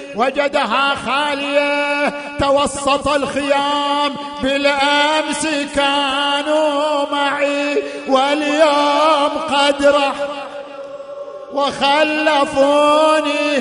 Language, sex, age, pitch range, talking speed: Arabic, male, 50-69, 280-290 Hz, 50 wpm